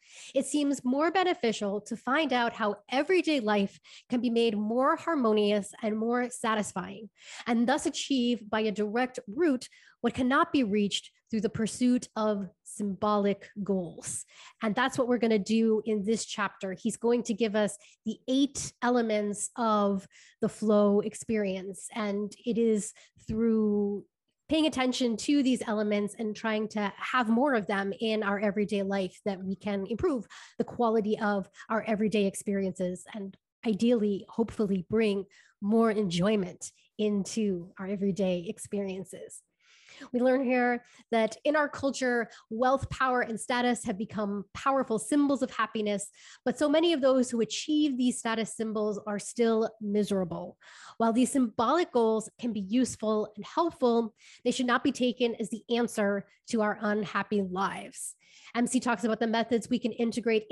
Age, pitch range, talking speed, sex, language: 20-39, 205-245 Hz, 155 wpm, female, English